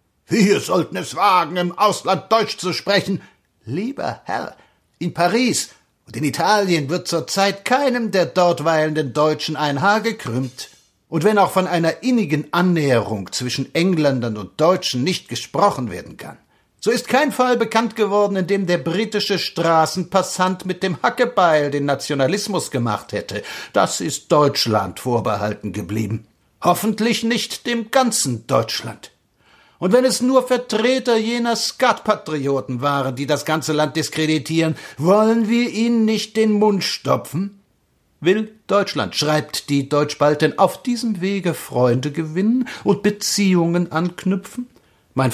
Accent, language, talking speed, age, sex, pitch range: German, German, 135 wpm, 60-79, male, 140-210 Hz